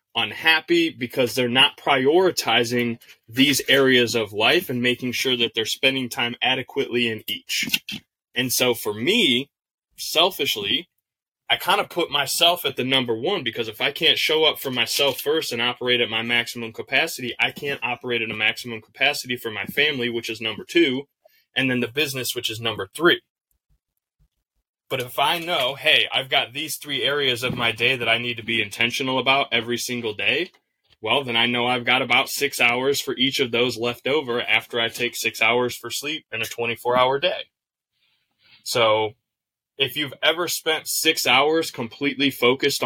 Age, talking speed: 20-39, 180 wpm